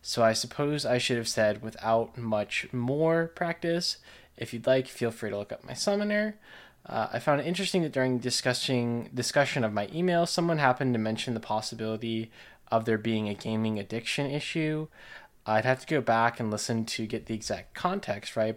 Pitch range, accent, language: 110-140 Hz, American, English